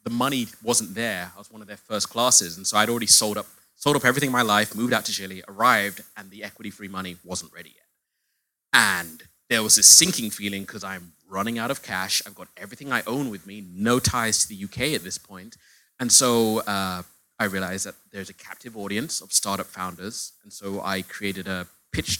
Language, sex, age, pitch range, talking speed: English, male, 30-49, 95-110 Hz, 220 wpm